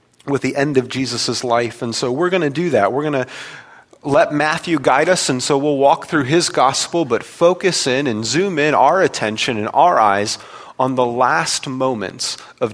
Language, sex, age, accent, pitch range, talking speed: English, male, 40-59, American, 110-140 Hz, 195 wpm